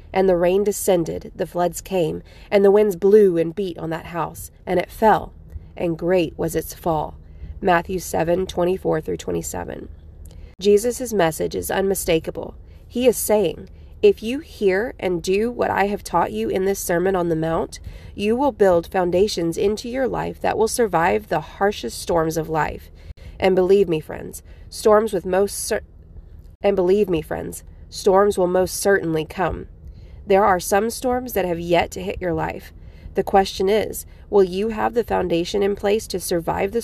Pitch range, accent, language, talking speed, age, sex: 160-200 Hz, American, English, 180 wpm, 30-49, female